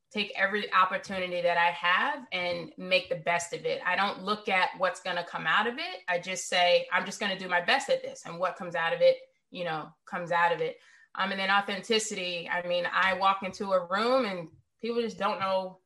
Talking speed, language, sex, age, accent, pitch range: 240 wpm, English, female, 20-39, American, 175-210 Hz